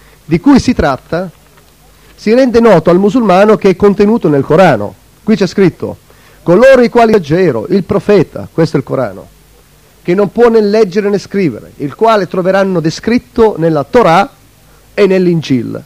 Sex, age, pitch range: male, 40-59, 140-205 Hz